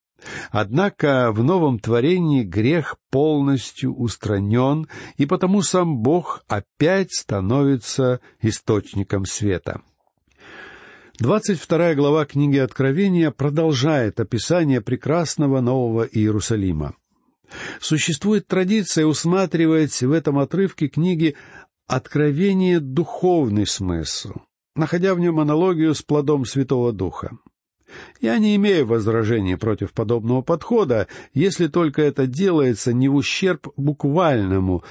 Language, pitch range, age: Russian, 115-170 Hz, 60-79